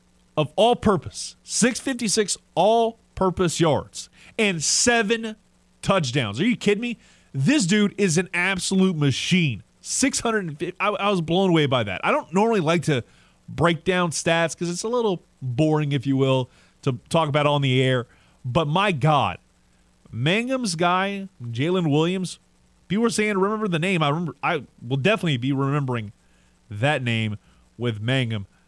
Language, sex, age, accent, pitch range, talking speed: English, male, 30-49, American, 115-175 Hz, 155 wpm